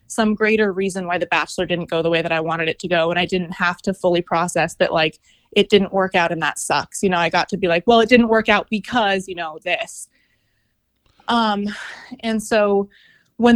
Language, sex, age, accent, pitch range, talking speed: English, female, 20-39, American, 185-210 Hz, 230 wpm